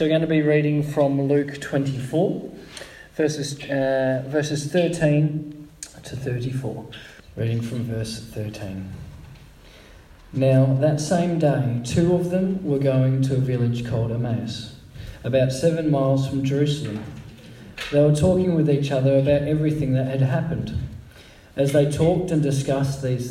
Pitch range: 130-160 Hz